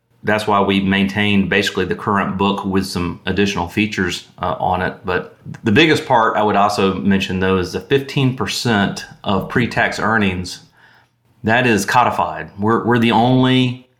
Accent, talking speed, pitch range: American, 160 wpm, 95-115 Hz